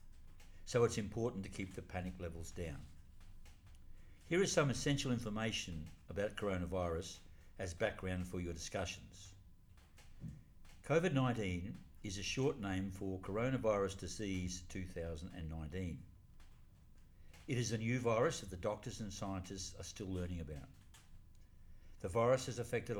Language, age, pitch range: English, 60-79, 85-105 Hz